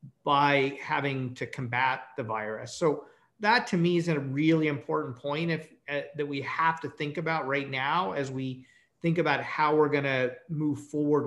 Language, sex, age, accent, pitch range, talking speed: English, male, 40-59, American, 135-165 Hz, 175 wpm